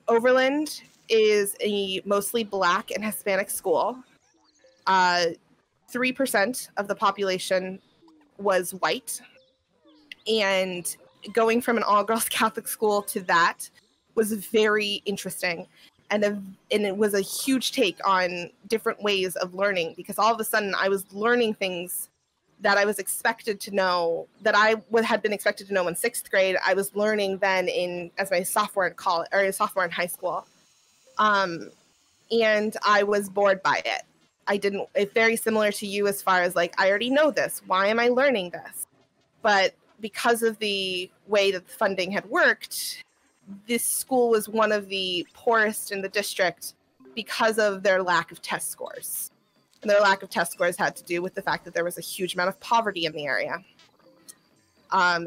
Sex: female